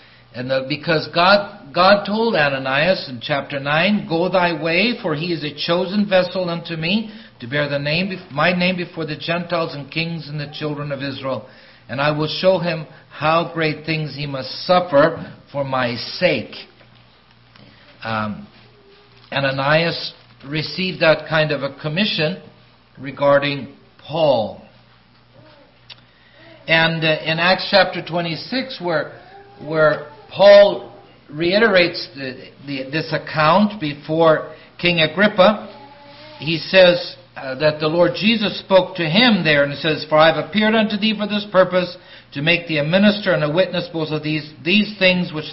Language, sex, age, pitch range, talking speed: English, male, 50-69, 140-180 Hz, 150 wpm